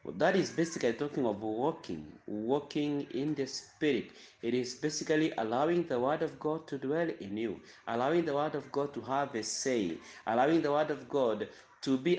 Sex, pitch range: male, 125-160 Hz